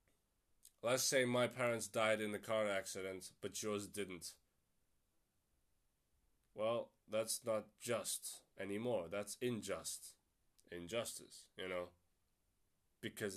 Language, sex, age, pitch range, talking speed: English, male, 20-39, 100-135 Hz, 105 wpm